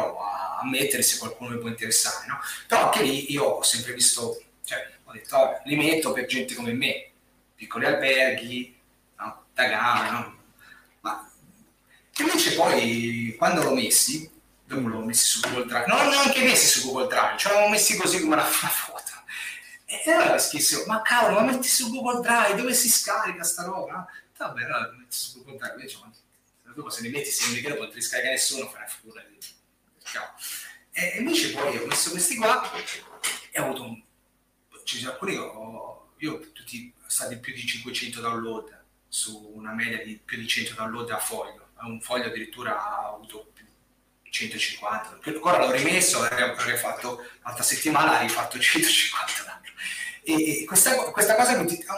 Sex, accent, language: male, native, Italian